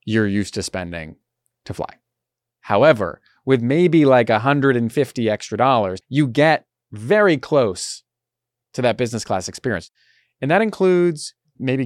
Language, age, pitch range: English, 30-49, 115-155 Hz